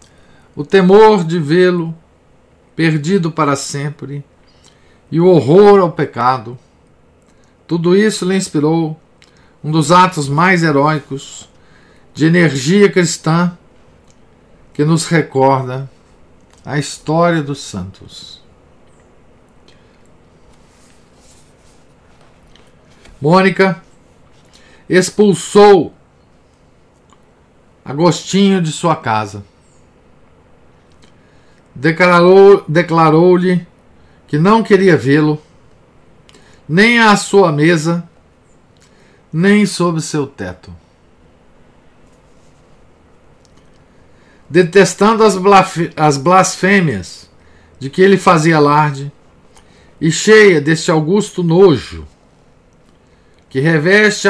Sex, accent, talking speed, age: male, Brazilian, 70 wpm, 50-69